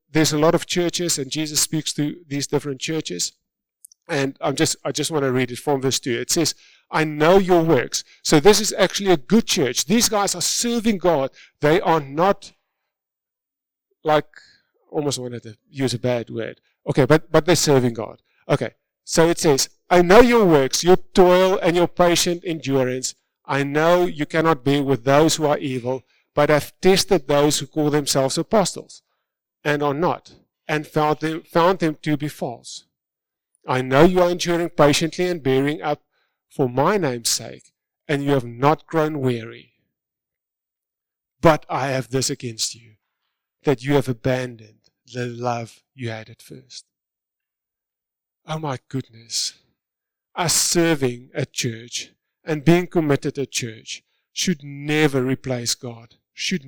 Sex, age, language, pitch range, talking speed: male, 50-69, English, 130-170 Hz, 165 wpm